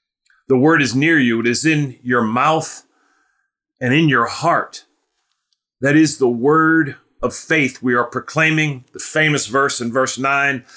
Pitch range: 120-155 Hz